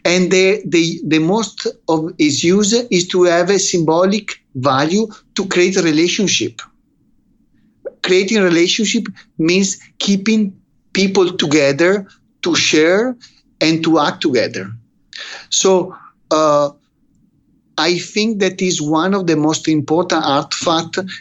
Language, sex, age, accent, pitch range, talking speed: English, male, 50-69, Italian, 145-190 Hz, 120 wpm